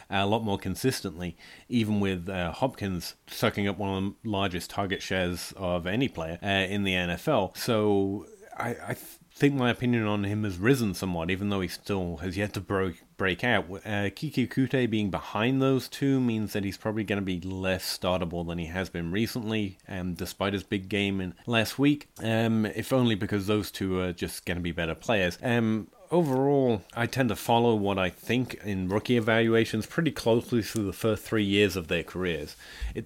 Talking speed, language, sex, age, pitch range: 195 wpm, English, male, 30-49, 95-115 Hz